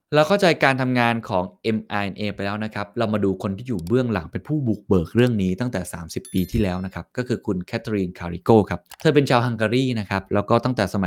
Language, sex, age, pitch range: Thai, male, 20-39, 95-125 Hz